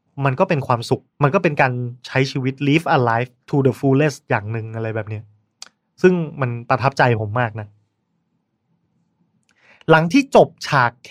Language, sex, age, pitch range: Thai, male, 20-39, 120-155 Hz